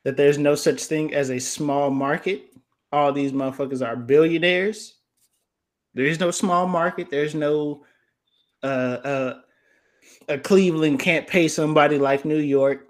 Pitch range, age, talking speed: 130-165 Hz, 20-39, 145 wpm